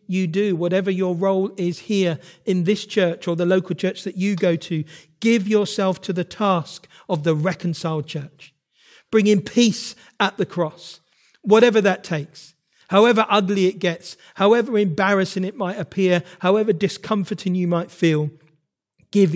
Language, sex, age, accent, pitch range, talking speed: English, male, 40-59, British, 150-190 Hz, 155 wpm